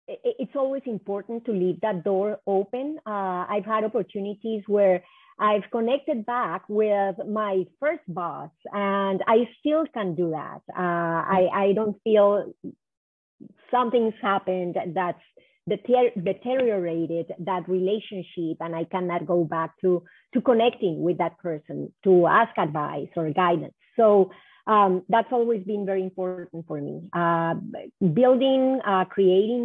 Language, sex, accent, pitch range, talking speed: English, female, Spanish, 180-225 Hz, 135 wpm